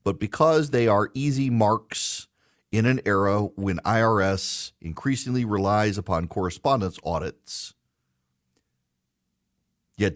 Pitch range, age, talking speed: 90-110 Hz, 40-59, 100 wpm